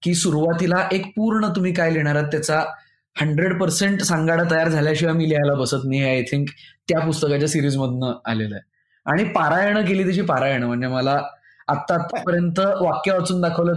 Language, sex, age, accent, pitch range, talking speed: Marathi, male, 20-39, native, 140-180 Hz, 160 wpm